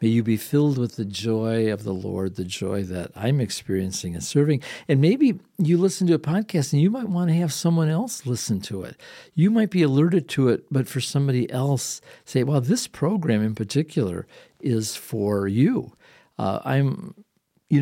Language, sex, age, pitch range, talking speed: English, male, 50-69, 105-145 Hz, 190 wpm